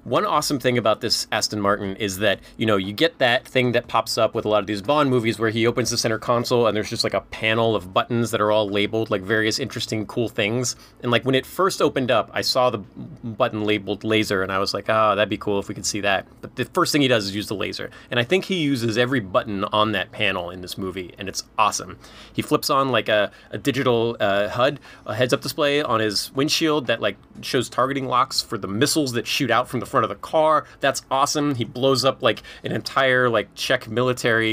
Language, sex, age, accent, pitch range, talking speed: English, male, 30-49, American, 110-135 Hz, 250 wpm